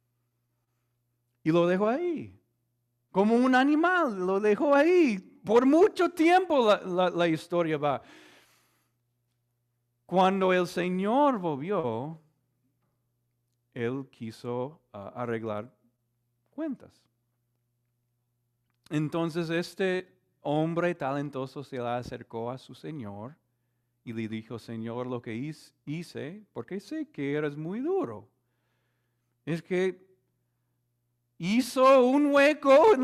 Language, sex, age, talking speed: Spanish, male, 40-59, 100 wpm